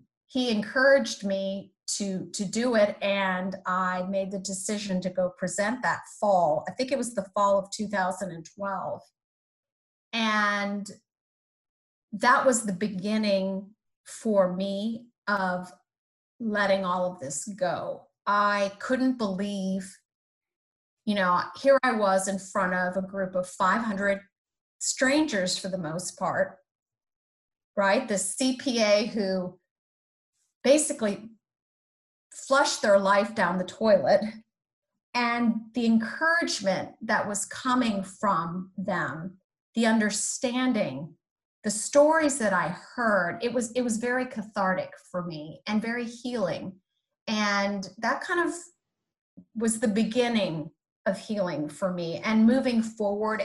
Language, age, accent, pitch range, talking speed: English, 30-49, American, 185-235 Hz, 120 wpm